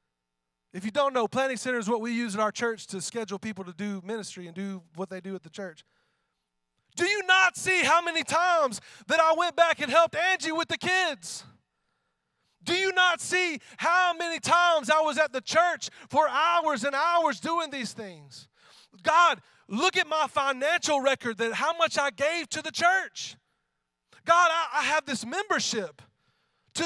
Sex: male